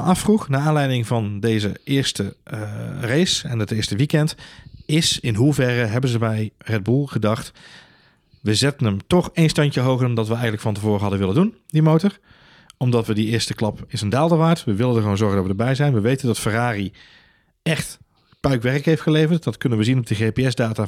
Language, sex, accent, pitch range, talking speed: Dutch, male, Dutch, 110-140 Hz, 205 wpm